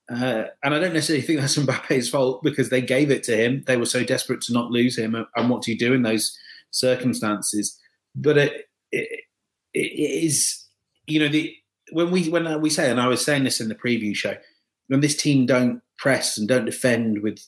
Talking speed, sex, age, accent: 205 wpm, male, 30-49, British